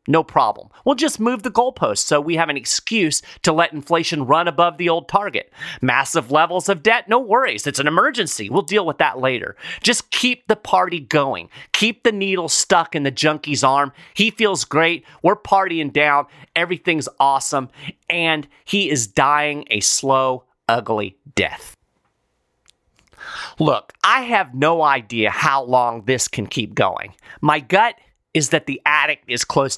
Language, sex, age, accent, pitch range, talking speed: English, male, 40-59, American, 130-190 Hz, 165 wpm